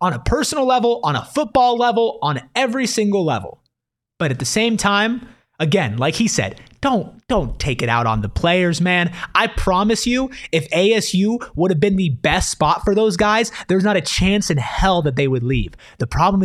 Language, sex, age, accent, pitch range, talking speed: English, male, 30-49, American, 150-220 Hz, 205 wpm